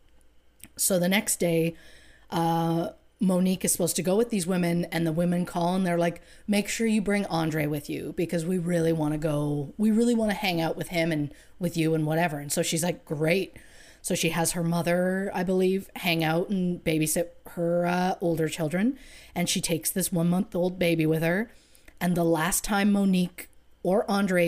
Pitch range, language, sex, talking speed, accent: 160-185 Hz, English, female, 205 wpm, American